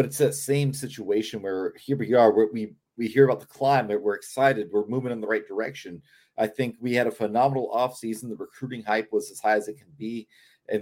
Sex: male